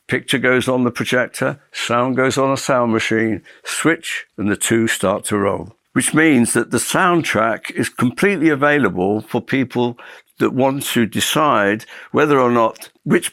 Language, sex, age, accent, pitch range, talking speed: English, male, 60-79, British, 105-125 Hz, 160 wpm